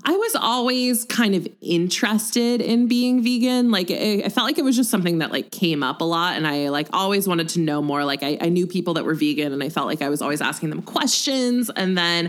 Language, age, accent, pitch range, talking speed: English, 20-39, American, 150-205 Hz, 250 wpm